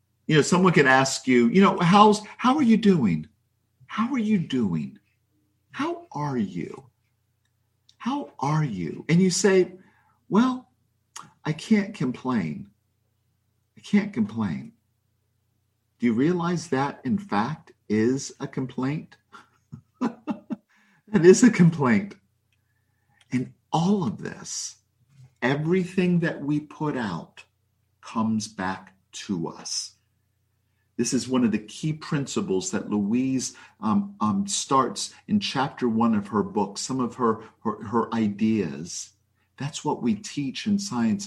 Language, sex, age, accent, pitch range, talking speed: English, male, 50-69, American, 110-185 Hz, 130 wpm